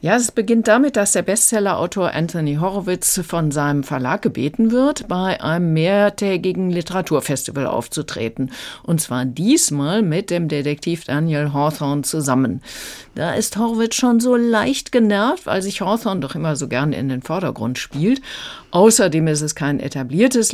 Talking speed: 150 wpm